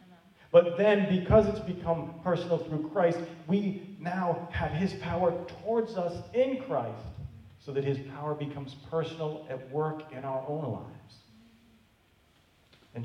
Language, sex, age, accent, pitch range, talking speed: English, male, 40-59, American, 115-155 Hz, 140 wpm